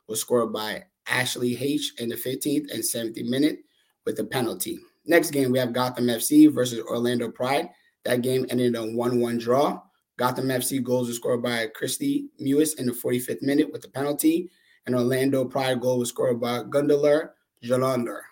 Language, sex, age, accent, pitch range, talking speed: English, male, 20-39, American, 125-145 Hz, 175 wpm